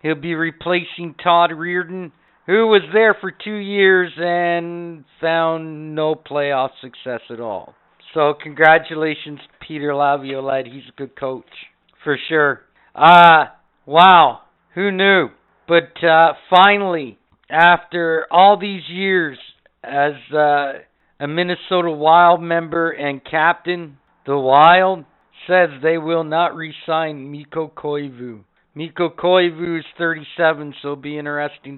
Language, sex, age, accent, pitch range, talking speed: English, male, 50-69, American, 140-170 Hz, 120 wpm